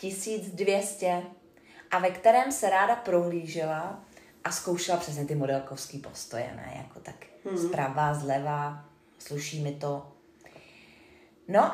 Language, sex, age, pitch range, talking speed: Czech, female, 30-49, 155-200 Hz, 110 wpm